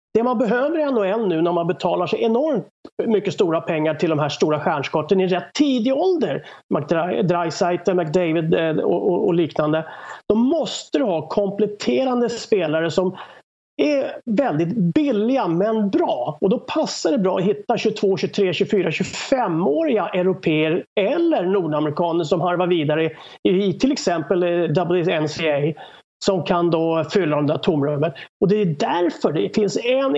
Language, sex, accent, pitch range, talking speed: English, male, Swedish, 170-240 Hz, 155 wpm